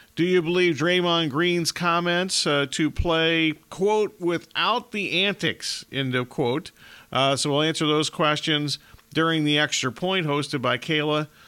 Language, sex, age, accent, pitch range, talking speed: English, male, 40-59, American, 140-175 Hz, 150 wpm